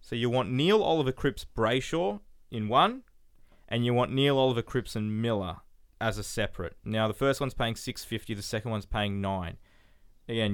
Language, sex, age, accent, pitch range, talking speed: English, male, 20-39, Australian, 95-120 Hz, 180 wpm